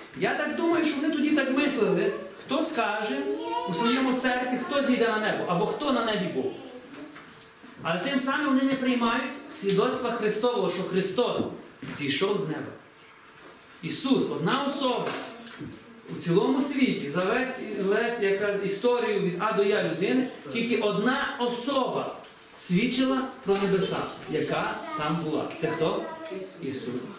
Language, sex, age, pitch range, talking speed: Ukrainian, male, 40-59, 185-250 Hz, 135 wpm